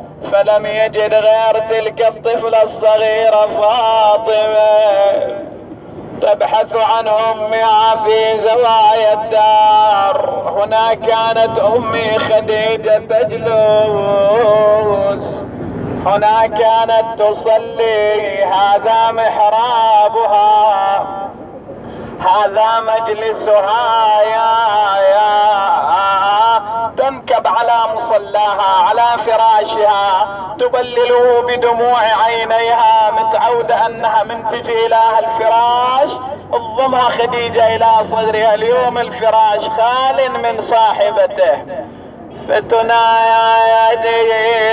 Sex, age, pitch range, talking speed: male, 30-49, 215-230 Hz, 65 wpm